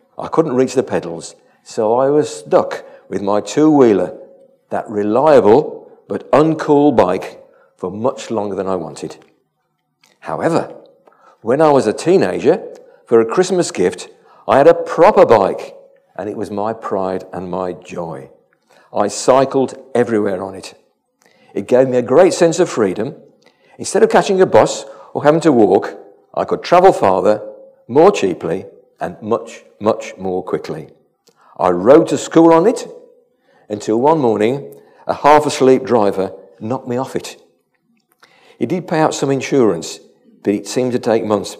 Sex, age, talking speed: male, 50-69, 155 wpm